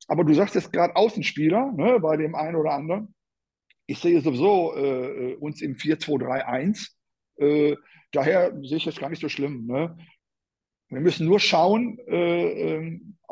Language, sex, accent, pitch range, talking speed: German, male, German, 155-205 Hz, 155 wpm